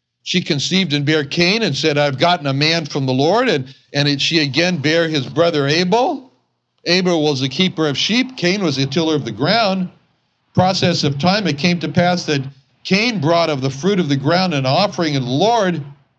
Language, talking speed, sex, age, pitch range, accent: English, 210 wpm, male, 60-79, 140-185 Hz, American